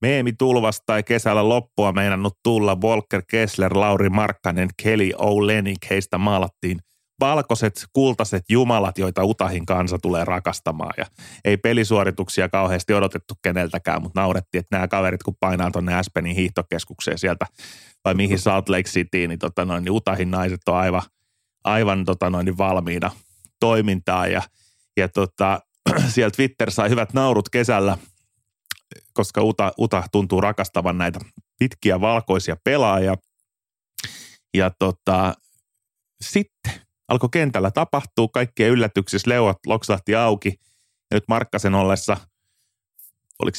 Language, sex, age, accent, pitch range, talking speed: Finnish, male, 30-49, native, 95-110 Hz, 125 wpm